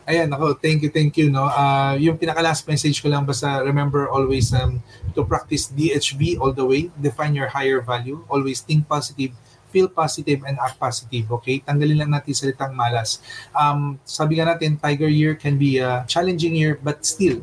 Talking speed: 185 wpm